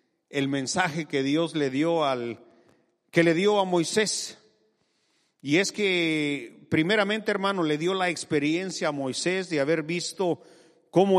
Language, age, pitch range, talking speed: English, 50-69, 155-190 Hz, 145 wpm